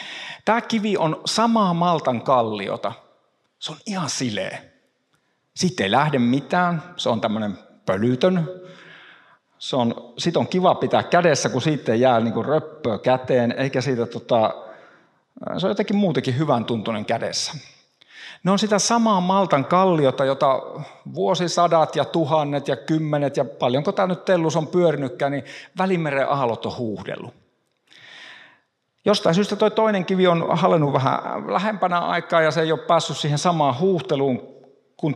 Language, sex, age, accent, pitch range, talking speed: Finnish, male, 50-69, native, 135-185 Hz, 145 wpm